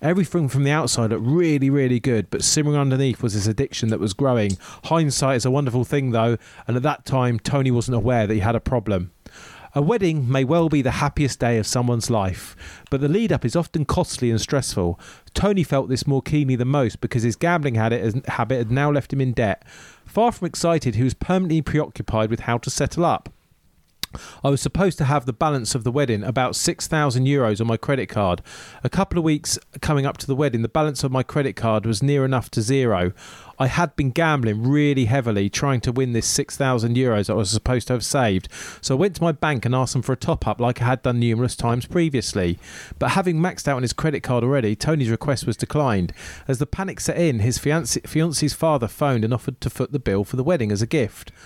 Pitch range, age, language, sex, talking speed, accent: 115-145 Hz, 40-59, English, male, 220 wpm, British